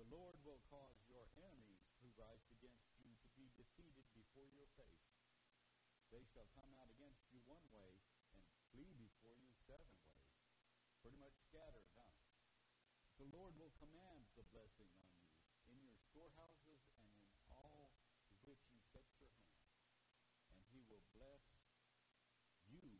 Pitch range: 100-140 Hz